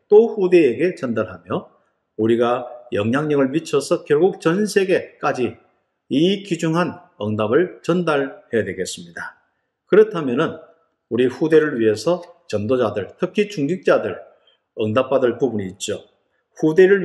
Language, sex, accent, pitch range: Korean, male, native, 135-210 Hz